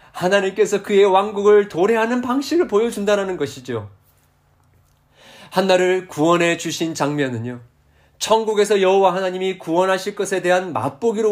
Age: 40-59